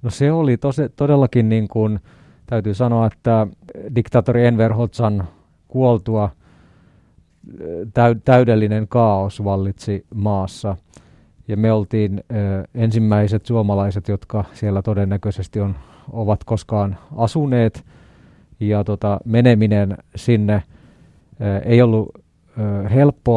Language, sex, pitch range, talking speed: Finnish, male, 100-120 Hz, 105 wpm